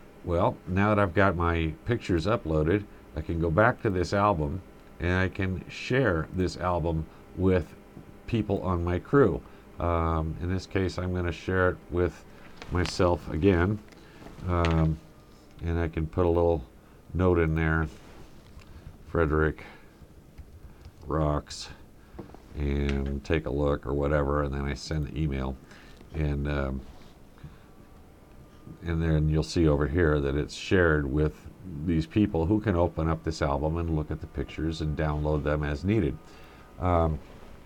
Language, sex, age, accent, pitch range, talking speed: English, male, 50-69, American, 75-100 Hz, 145 wpm